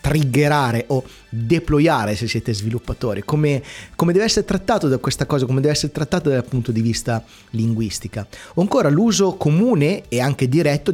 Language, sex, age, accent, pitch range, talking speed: Italian, male, 30-49, native, 115-145 Hz, 165 wpm